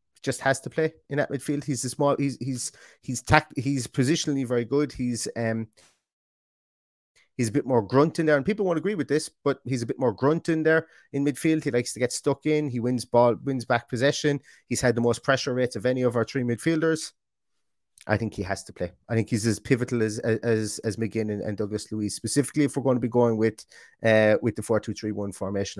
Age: 30-49